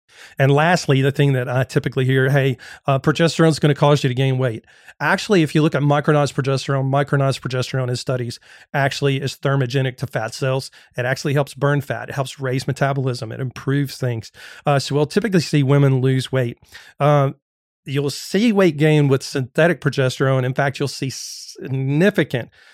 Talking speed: 180 wpm